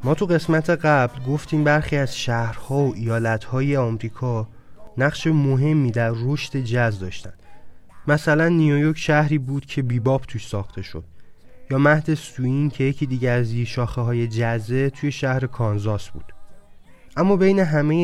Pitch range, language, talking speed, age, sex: 115-150 Hz, Persian, 145 wpm, 20-39, male